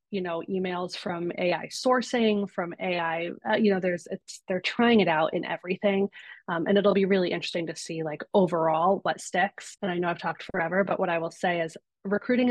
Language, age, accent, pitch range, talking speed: English, 30-49, American, 165-195 Hz, 210 wpm